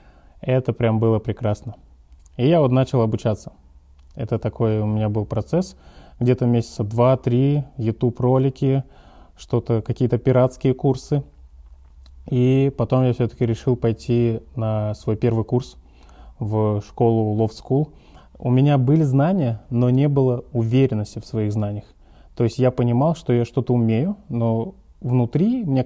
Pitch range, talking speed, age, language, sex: 110-135 Hz, 135 wpm, 20-39, Russian, male